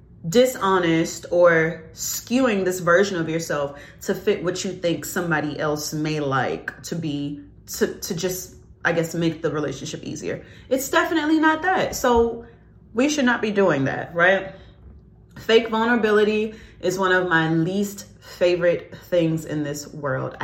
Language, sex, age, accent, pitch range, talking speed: English, female, 30-49, American, 160-205 Hz, 150 wpm